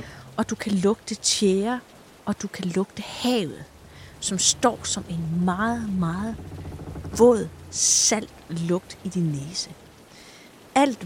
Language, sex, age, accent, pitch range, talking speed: Danish, female, 30-49, native, 175-230 Hz, 125 wpm